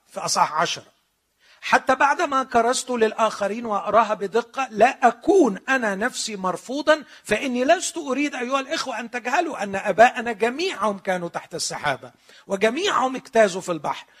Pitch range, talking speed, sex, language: 180-265 Hz, 125 wpm, male, Arabic